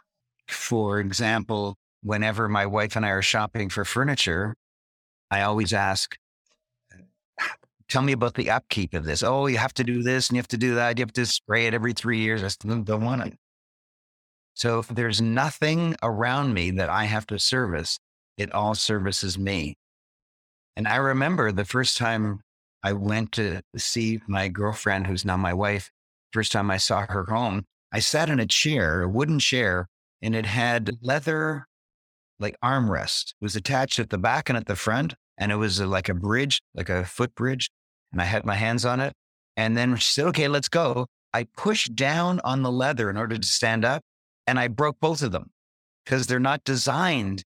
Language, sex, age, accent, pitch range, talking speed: English, male, 50-69, American, 100-125 Hz, 190 wpm